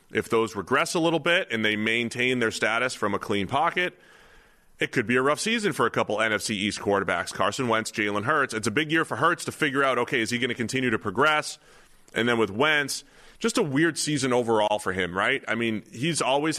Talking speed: 235 wpm